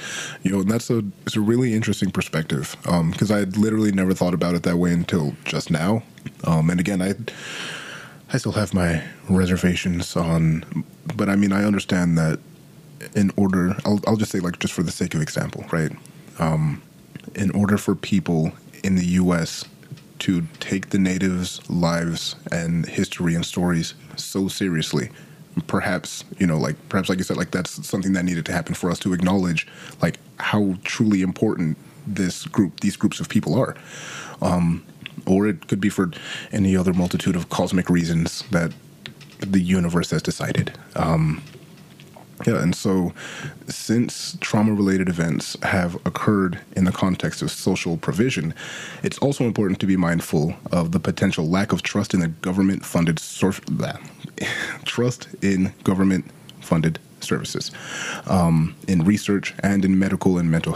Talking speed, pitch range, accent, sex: 160 wpm, 85-100 Hz, American, male